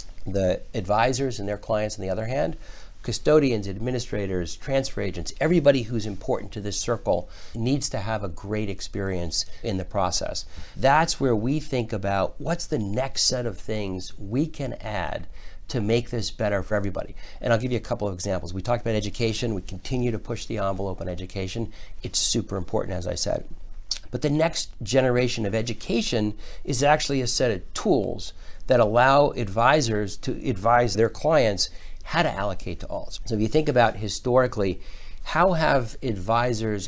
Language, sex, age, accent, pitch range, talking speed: English, male, 60-79, American, 95-130 Hz, 175 wpm